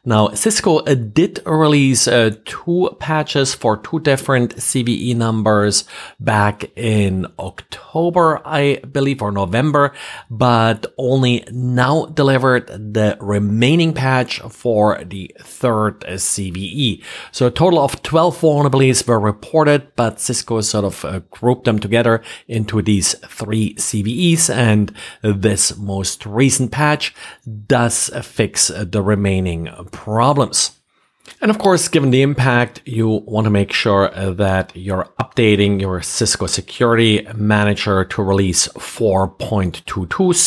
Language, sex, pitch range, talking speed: English, male, 105-140 Hz, 120 wpm